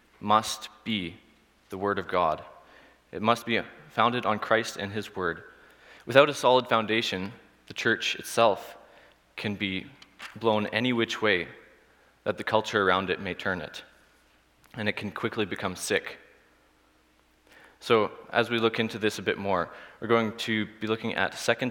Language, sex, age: English, male, 20-39